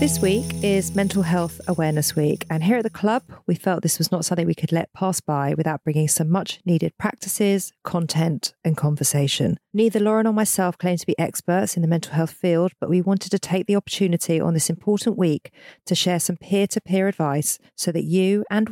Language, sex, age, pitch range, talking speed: English, female, 40-59, 160-195 Hz, 215 wpm